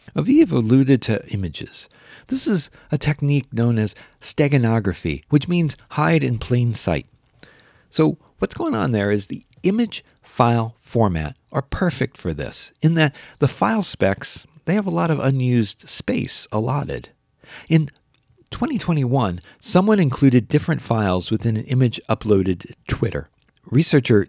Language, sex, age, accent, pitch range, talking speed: English, male, 40-59, American, 110-150 Hz, 140 wpm